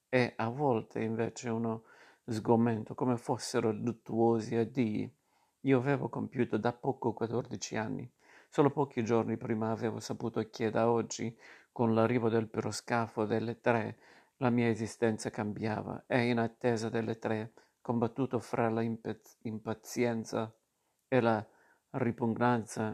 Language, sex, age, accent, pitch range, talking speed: Italian, male, 50-69, native, 115-125 Hz, 125 wpm